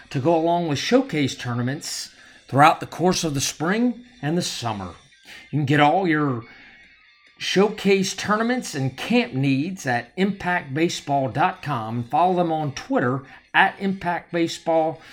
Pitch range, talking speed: 135-190 Hz, 130 wpm